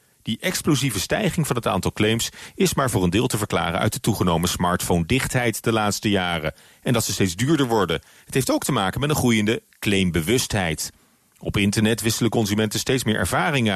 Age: 40-59